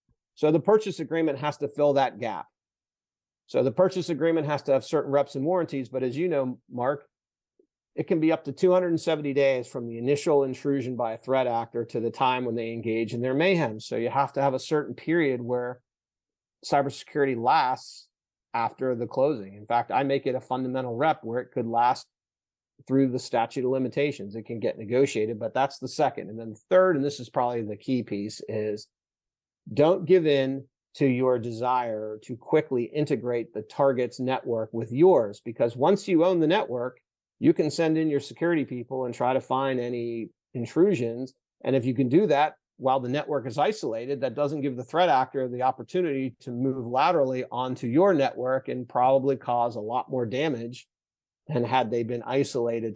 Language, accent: English, American